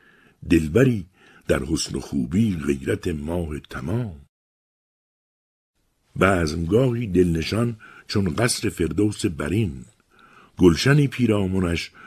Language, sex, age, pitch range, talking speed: Persian, male, 60-79, 75-105 Hz, 80 wpm